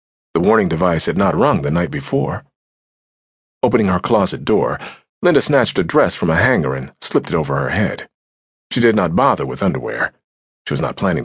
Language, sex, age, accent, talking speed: English, male, 40-59, American, 190 wpm